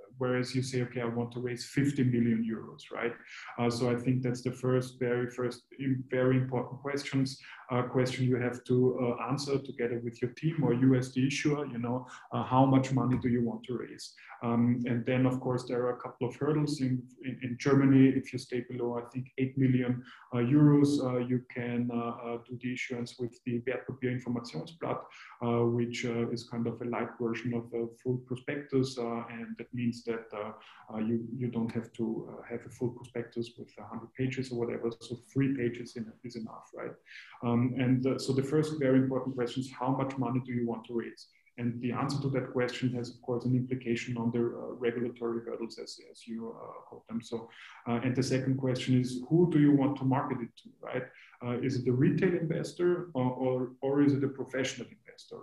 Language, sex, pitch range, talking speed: English, male, 120-130 Hz, 215 wpm